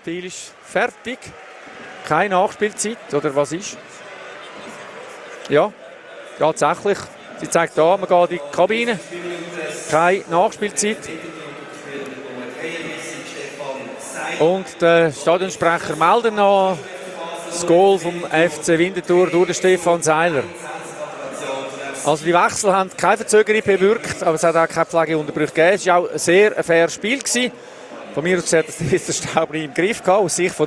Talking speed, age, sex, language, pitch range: 140 wpm, 40-59, male, German, 145-185 Hz